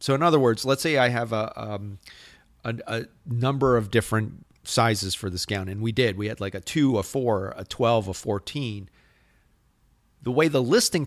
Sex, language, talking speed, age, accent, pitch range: male, English, 200 wpm, 40-59, American, 105-130 Hz